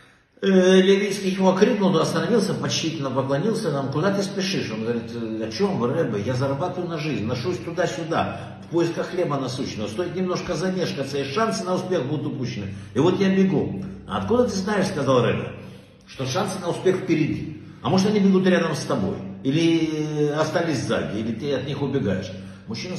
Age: 60-79